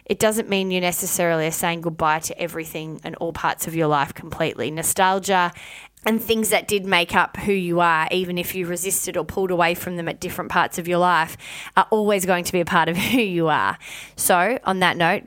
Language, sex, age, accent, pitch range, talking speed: English, female, 20-39, Australian, 170-205 Hz, 225 wpm